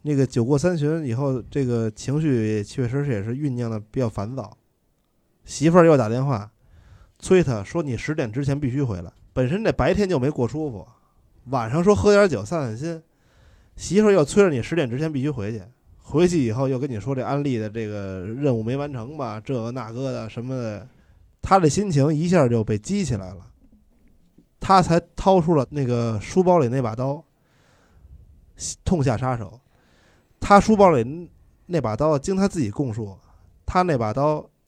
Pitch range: 110-155 Hz